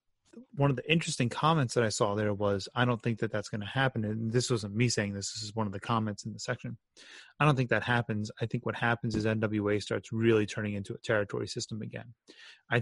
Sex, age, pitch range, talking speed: male, 30-49, 105-120 Hz, 250 wpm